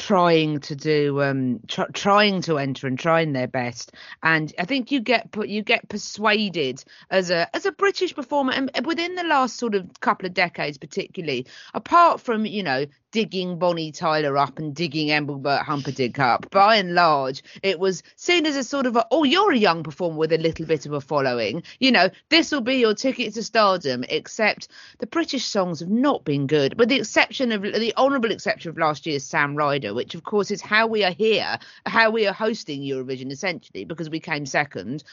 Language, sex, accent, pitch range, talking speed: English, female, British, 155-230 Hz, 205 wpm